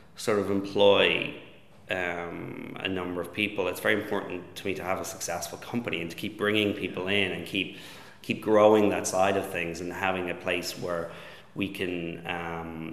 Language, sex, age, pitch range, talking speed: English, male, 30-49, 85-105 Hz, 185 wpm